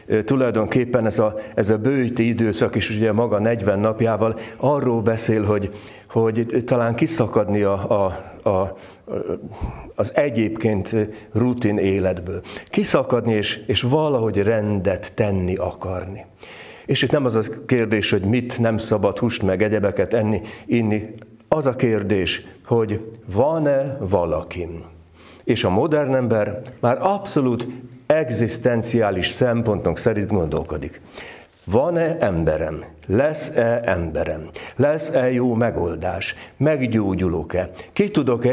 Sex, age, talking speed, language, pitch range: male, 60-79, 115 wpm, Hungarian, 100-125 Hz